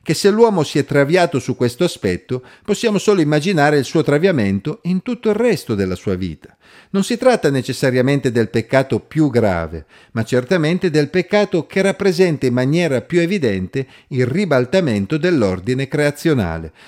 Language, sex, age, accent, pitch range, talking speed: Italian, male, 50-69, native, 120-180 Hz, 155 wpm